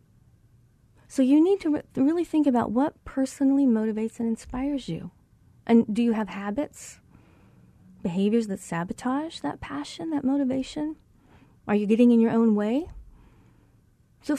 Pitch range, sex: 180-270 Hz, female